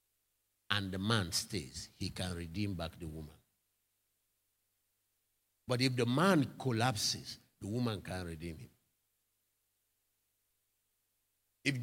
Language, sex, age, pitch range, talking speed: English, male, 50-69, 100-130 Hz, 105 wpm